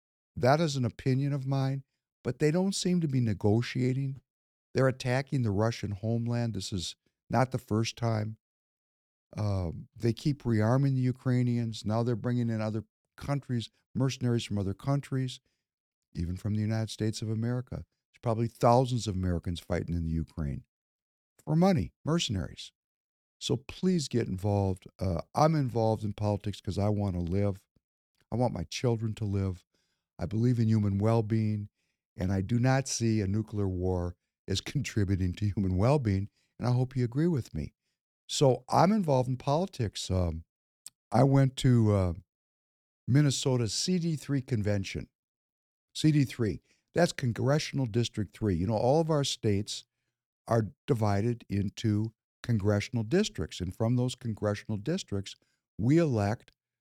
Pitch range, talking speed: 100-130 Hz, 150 wpm